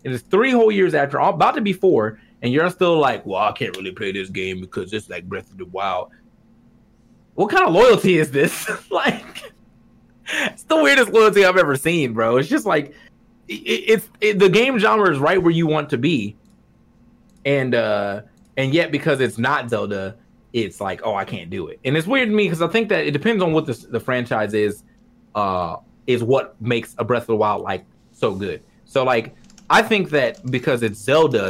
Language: English